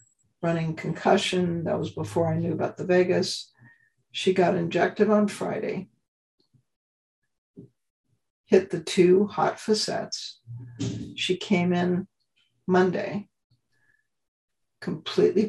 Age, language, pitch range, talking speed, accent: 60-79, English, 165-195 Hz, 95 wpm, American